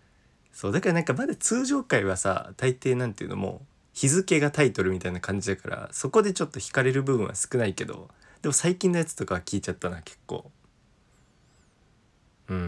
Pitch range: 95-145 Hz